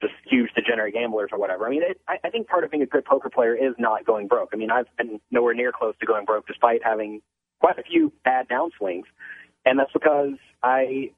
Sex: male